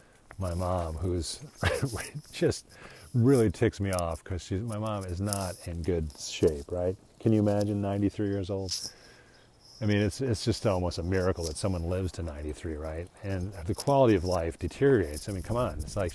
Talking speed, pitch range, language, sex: 180 wpm, 90-110 Hz, English, male